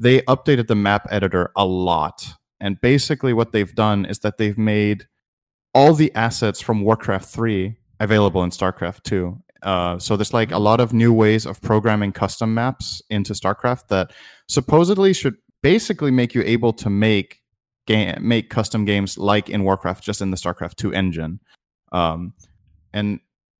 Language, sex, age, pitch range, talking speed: English, male, 30-49, 100-120 Hz, 165 wpm